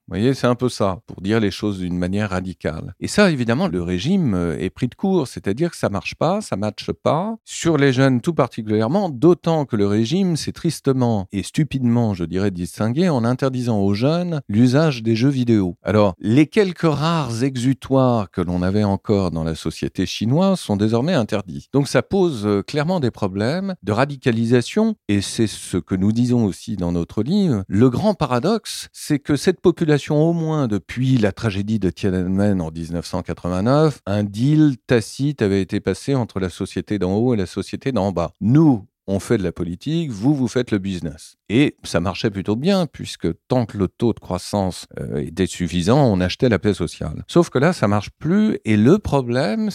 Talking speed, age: 195 wpm, 50-69